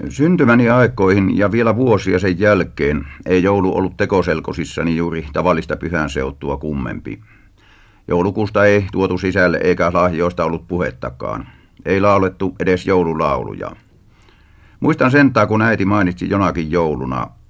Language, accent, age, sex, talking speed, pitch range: Finnish, native, 50-69, male, 115 wpm, 80-100 Hz